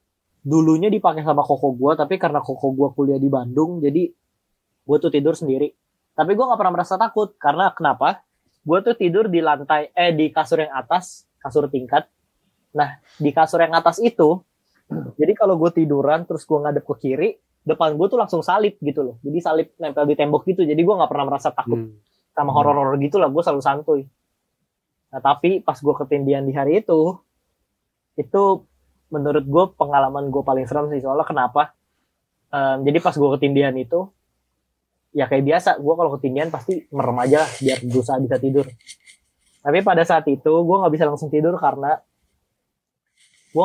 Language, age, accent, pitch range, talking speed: Indonesian, 20-39, native, 140-170 Hz, 170 wpm